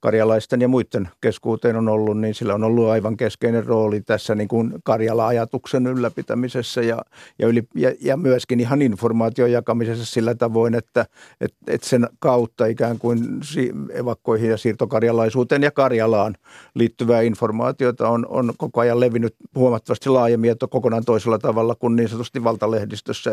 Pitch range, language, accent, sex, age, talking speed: 115-125 Hz, Finnish, native, male, 50-69, 145 wpm